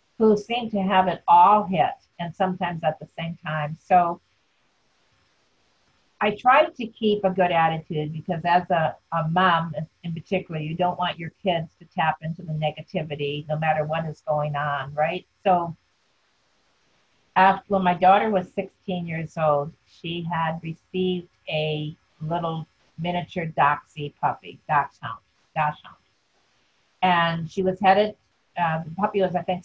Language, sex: English, female